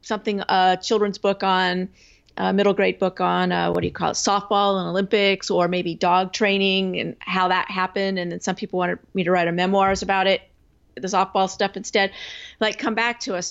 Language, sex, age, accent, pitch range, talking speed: English, female, 40-59, American, 185-220 Hz, 215 wpm